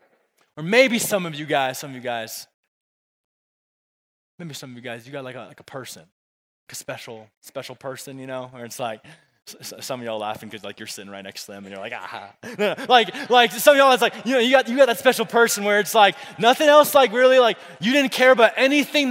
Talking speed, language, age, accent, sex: 240 wpm, English, 20-39, American, male